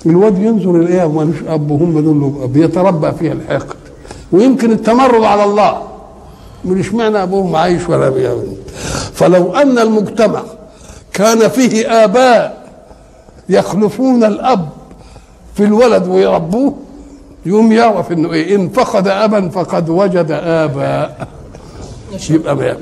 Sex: male